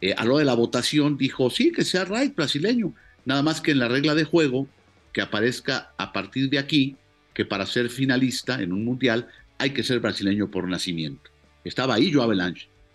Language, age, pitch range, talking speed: English, 50-69, 100-145 Hz, 200 wpm